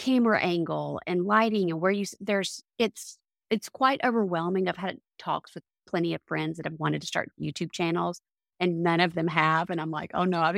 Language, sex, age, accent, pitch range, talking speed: English, female, 30-49, American, 170-210 Hz, 210 wpm